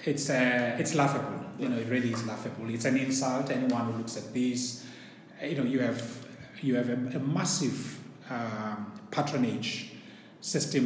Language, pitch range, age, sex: English, 115-145 Hz, 30-49, male